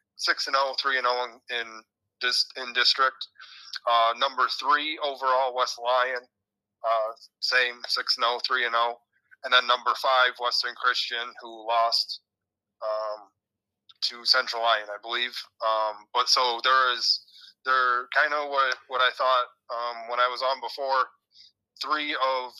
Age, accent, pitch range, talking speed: 30-49, American, 110-130 Hz, 145 wpm